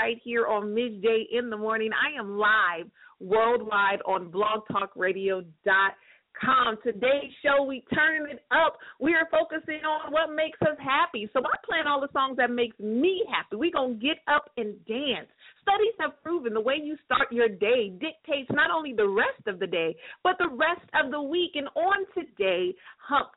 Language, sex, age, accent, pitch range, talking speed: English, female, 40-59, American, 230-305 Hz, 180 wpm